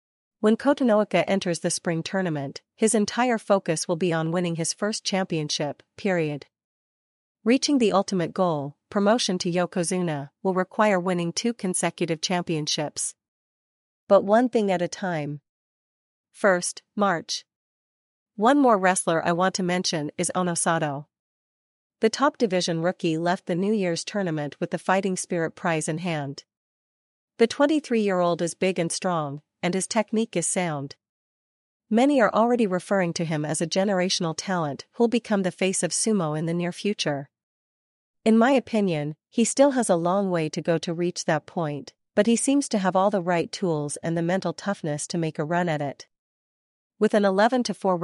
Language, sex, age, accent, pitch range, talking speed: English, female, 40-59, American, 165-210 Hz, 165 wpm